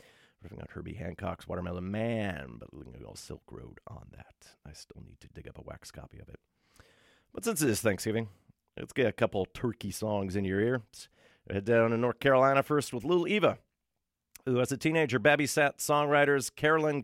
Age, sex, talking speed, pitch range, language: 40-59, male, 200 wpm, 95-140 Hz, English